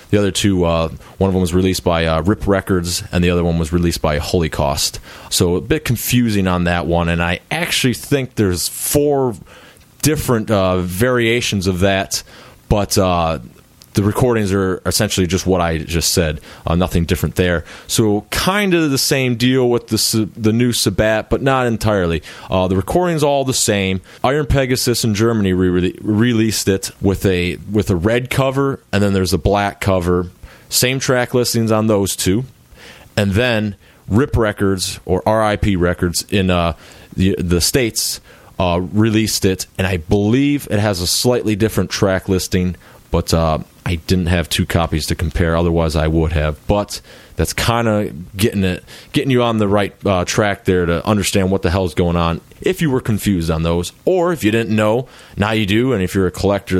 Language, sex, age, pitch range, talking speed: English, male, 30-49, 90-110 Hz, 185 wpm